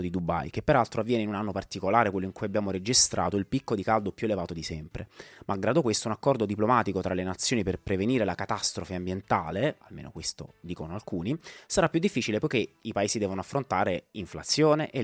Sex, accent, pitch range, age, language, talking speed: male, native, 90-115 Hz, 30-49, Italian, 195 wpm